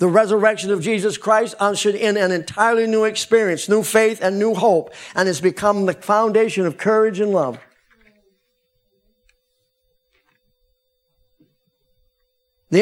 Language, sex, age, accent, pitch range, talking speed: English, male, 50-69, American, 185-255 Hz, 120 wpm